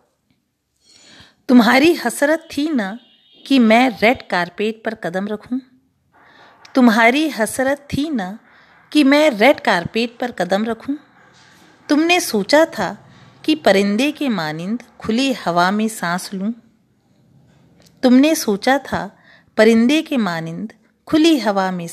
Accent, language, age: native, Hindi, 40-59